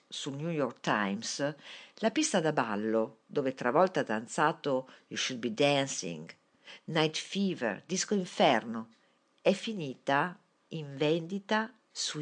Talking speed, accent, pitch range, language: 120 wpm, native, 140-200 Hz, Italian